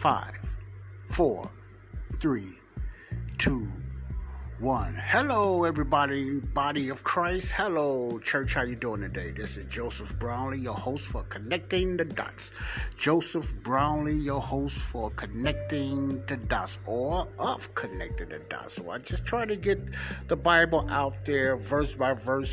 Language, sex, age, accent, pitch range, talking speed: English, male, 60-79, American, 100-145 Hz, 140 wpm